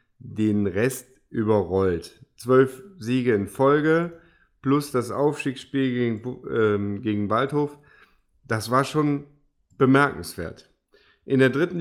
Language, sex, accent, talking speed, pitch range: German, male, German, 105 wpm, 115-145 Hz